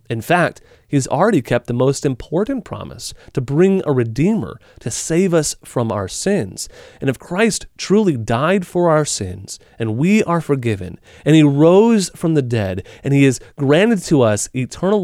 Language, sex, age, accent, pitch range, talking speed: English, male, 30-49, American, 120-185 Hz, 175 wpm